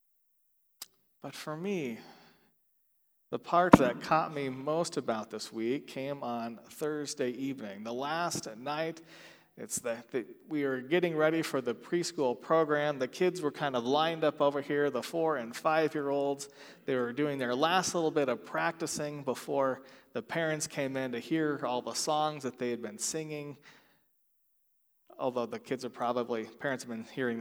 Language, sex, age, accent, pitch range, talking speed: English, male, 40-59, American, 120-150 Hz, 165 wpm